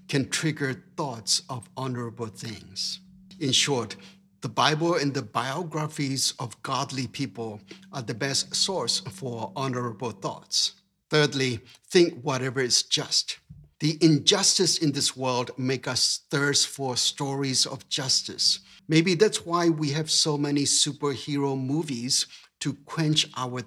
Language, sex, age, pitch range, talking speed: English, male, 60-79, 130-160 Hz, 130 wpm